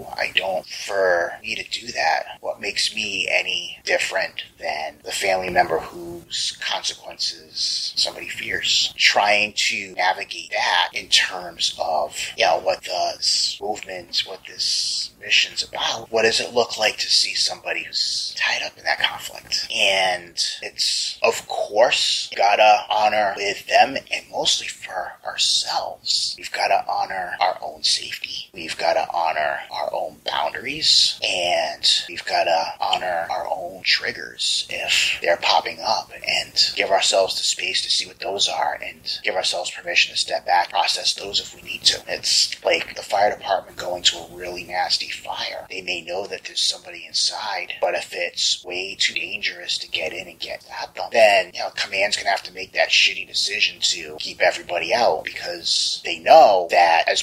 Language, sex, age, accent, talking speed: English, male, 30-49, American, 170 wpm